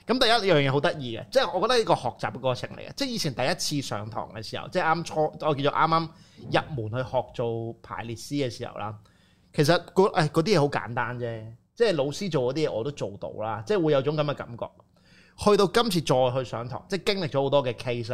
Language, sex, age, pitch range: Chinese, male, 30-49, 120-155 Hz